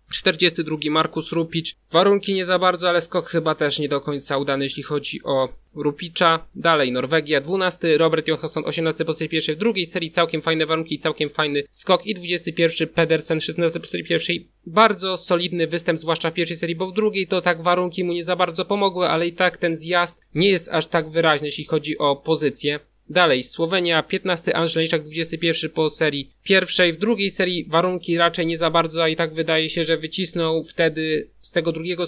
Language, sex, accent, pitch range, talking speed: Polish, male, native, 155-175 Hz, 190 wpm